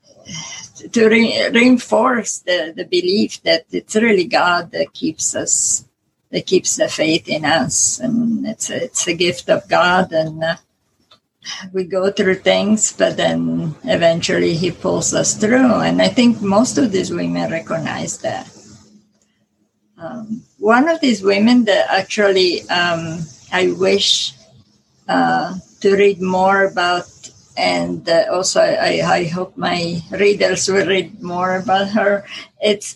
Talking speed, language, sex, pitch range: 140 wpm, English, female, 175-215 Hz